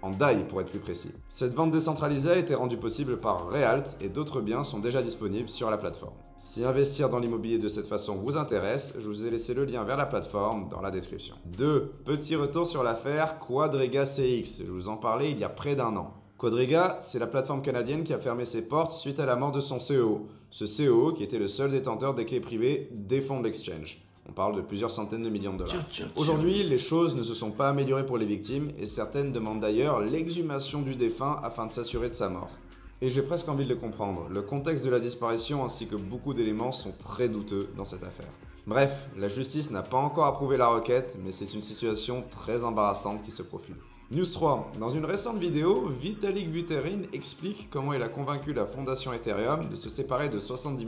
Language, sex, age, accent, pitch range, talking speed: French, male, 30-49, French, 110-145 Hz, 220 wpm